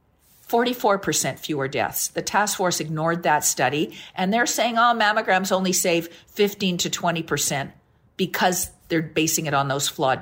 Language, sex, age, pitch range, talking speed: English, female, 50-69, 160-220 Hz, 155 wpm